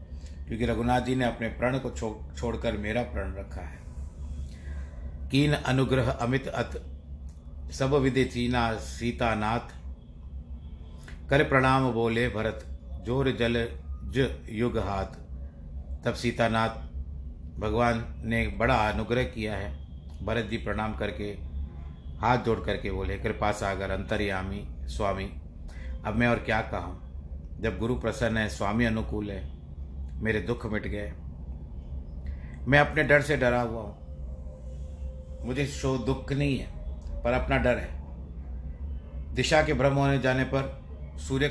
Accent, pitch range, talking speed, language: native, 70-120 Hz, 135 wpm, Hindi